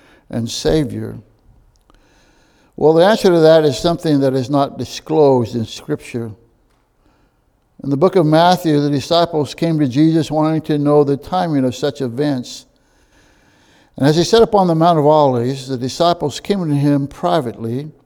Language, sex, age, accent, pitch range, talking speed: English, male, 60-79, American, 125-155 Hz, 160 wpm